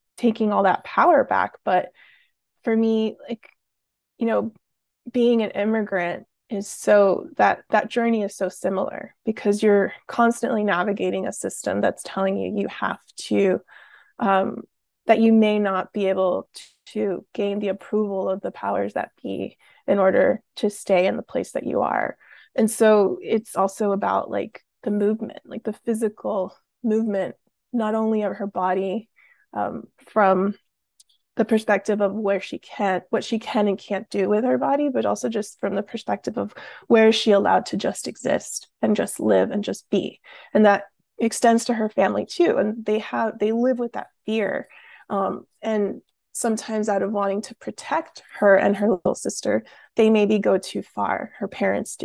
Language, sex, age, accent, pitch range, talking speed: English, female, 20-39, American, 200-230 Hz, 175 wpm